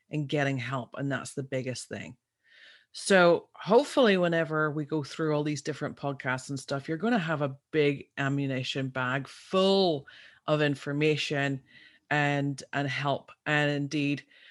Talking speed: 150 wpm